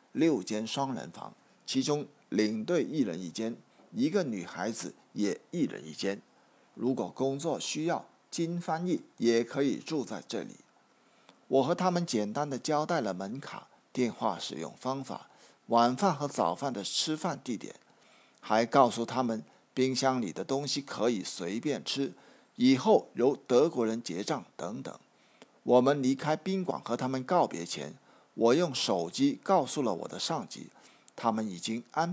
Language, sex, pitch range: Chinese, male, 120-165 Hz